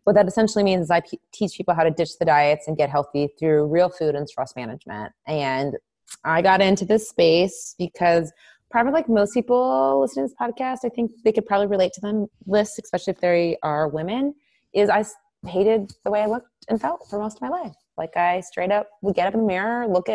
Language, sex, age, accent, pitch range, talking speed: English, female, 20-39, American, 155-215 Hz, 225 wpm